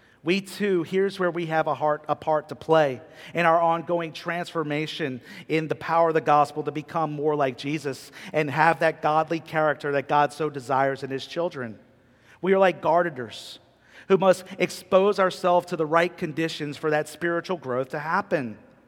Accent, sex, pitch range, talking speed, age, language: American, male, 145-180 Hz, 180 wpm, 40-59, English